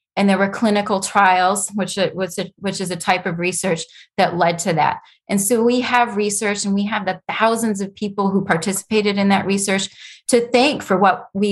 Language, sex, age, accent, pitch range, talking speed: English, female, 20-39, American, 175-210 Hz, 200 wpm